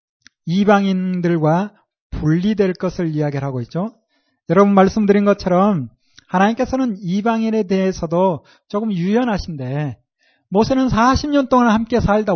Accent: native